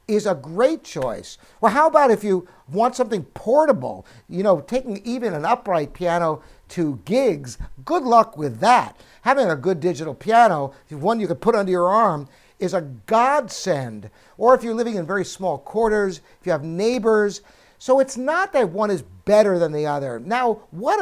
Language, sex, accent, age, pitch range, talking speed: English, male, American, 60-79, 160-230 Hz, 185 wpm